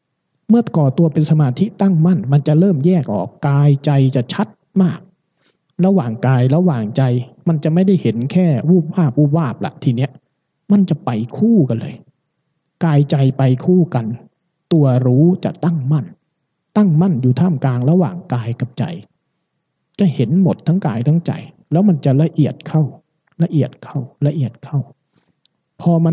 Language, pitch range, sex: Thai, 135-170 Hz, male